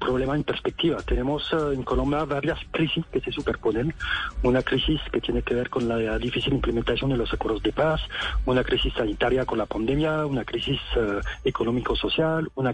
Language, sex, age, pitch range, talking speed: Spanish, male, 40-59, 130-160 Hz, 175 wpm